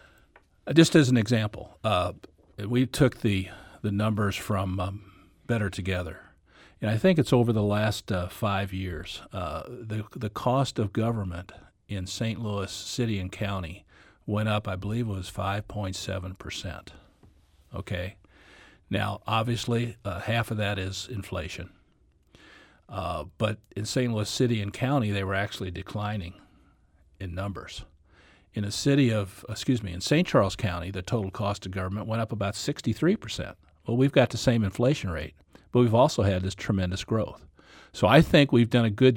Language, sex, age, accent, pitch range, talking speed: English, male, 50-69, American, 95-115 Hz, 165 wpm